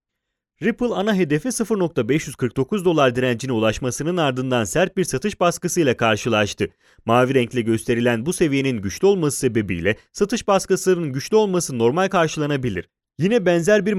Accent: Turkish